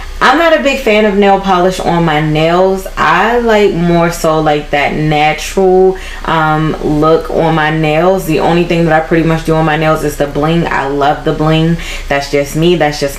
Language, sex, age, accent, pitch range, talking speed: English, female, 10-29, American, 155-190 Hz, 210 wpm